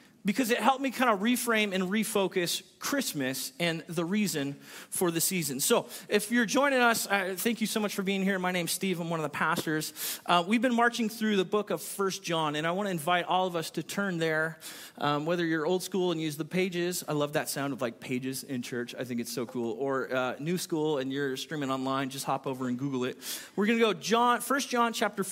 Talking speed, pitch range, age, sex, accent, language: 240 wpm, 165-230 Hz, 30-49, male, American, English